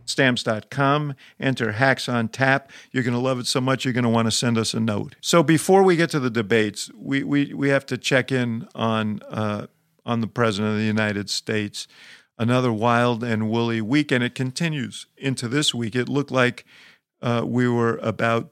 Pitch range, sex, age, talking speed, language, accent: 110-130 Hz, male, 50-69, 200 wpm, English, American